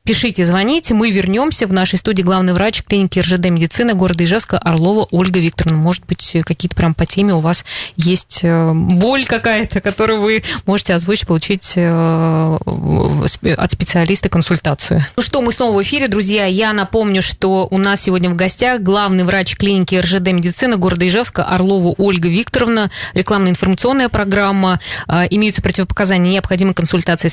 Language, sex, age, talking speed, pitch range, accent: Russian, female, 20-39, 145 wpm, 175-205 Hz, native